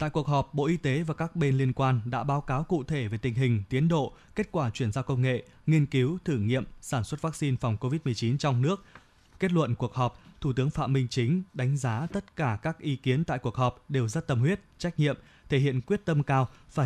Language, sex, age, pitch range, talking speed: Vietnamese, male, 20-39, 120-155 Hz, 245 wpm